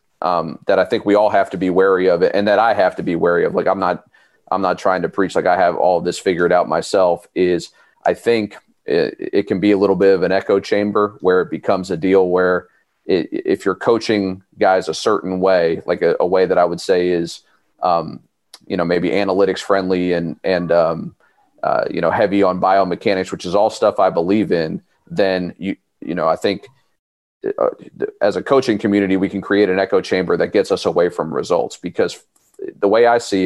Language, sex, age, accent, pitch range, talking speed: English, male, 30-49, American, 90-110 Hz, 220 wpm